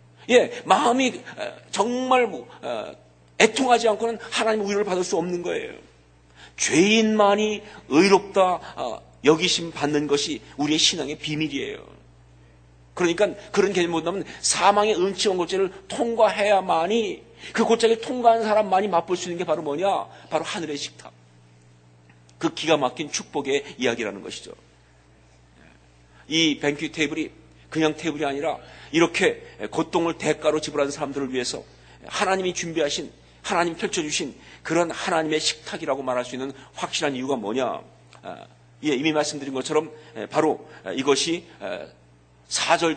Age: 40-59